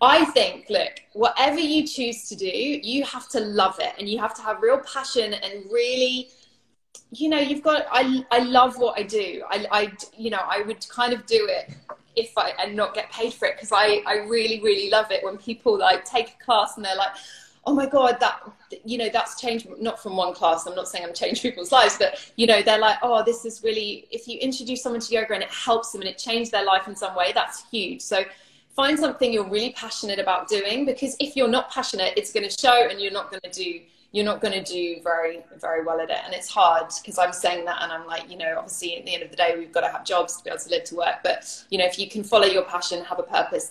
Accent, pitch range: British, 185-245 Hz